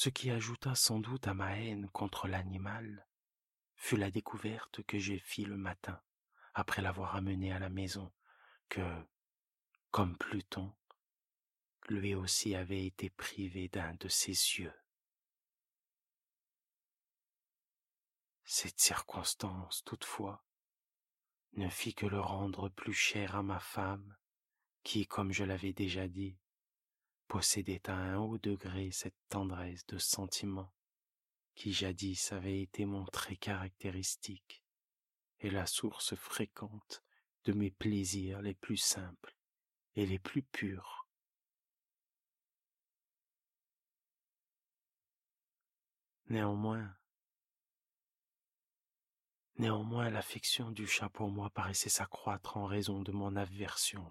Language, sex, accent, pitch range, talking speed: French, male, French, 95-105 Hz, 110 wpm